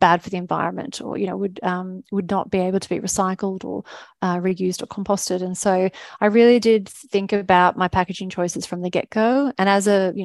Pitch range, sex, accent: 180-200 Hz, female, Australian